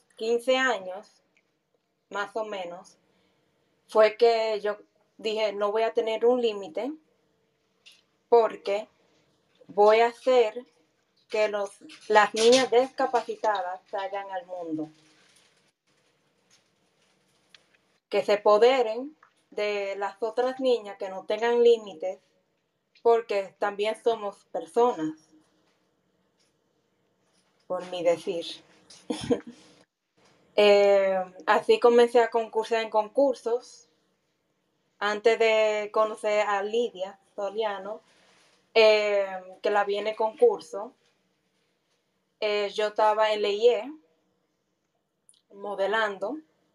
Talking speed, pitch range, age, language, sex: 90 wpm, 185-225 Hz, 30-49, Spanish, female